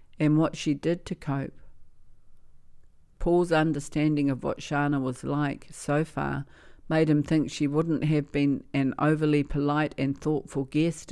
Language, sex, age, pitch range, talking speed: English, female, 50-69, 140-160 Hz, 150 wpm